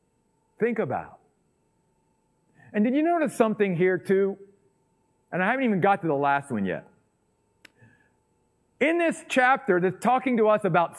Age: 50-69